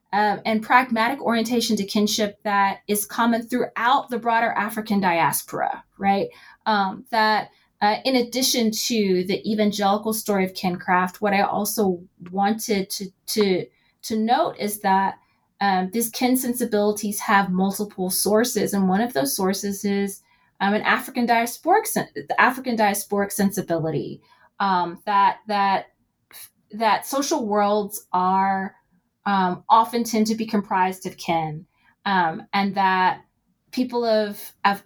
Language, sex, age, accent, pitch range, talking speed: English, female, 20-39, American, 185-220 Hz, 140 wpm